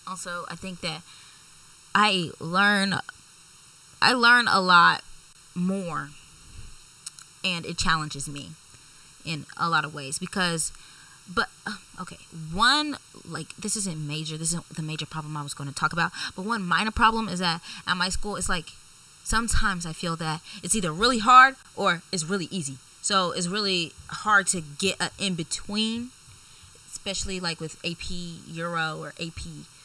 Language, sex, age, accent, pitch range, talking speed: English, female, 20-39, American, 160-195 Hz, 155 wpm